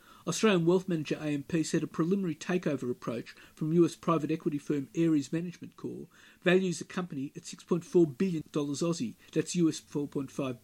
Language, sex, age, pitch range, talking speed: English, male, 50-69, 145-180 Hz, 150 wpm